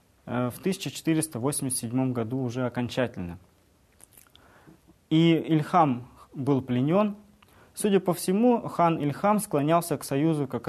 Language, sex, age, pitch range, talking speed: Russian, male, 20-39, 125-165 Hz, 100 wpm